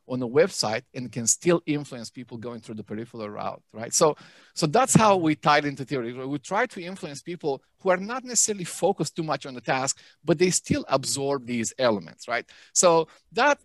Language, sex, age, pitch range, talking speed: English, male, 40-59, 120-165 Hz, 200 wpm